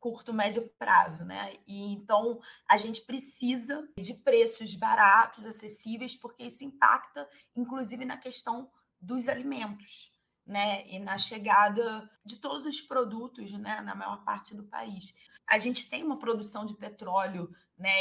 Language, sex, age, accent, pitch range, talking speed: Portuguese, female, 20-39, Brazilian, 200-240 Hz, 145 wpm